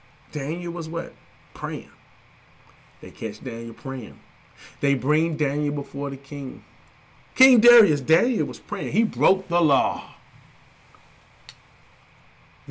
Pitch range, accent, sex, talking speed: 140-170 Hz, American, male, 115 wpm